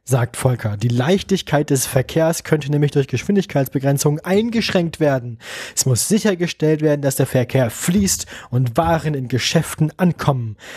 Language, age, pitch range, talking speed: German, 20-39, 130-160 Hz, 140 wpm